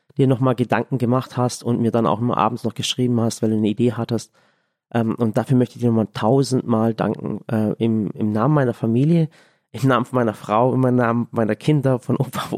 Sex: male